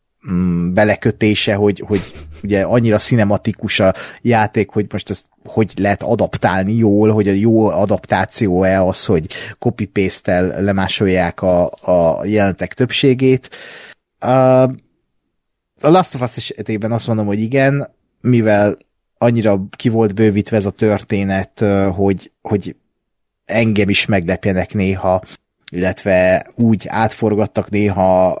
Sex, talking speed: male, 115 wpm